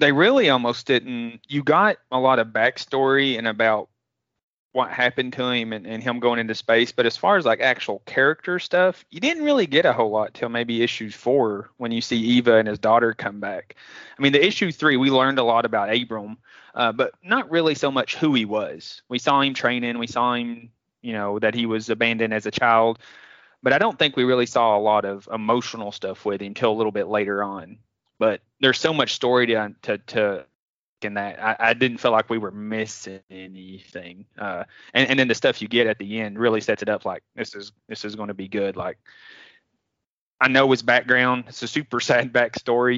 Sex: male